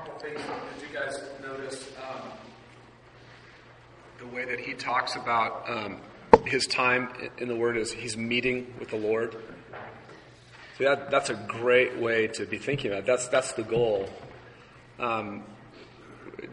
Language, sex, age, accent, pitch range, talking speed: English, male, 40-59, American, 115-135 Hz, 135 wpm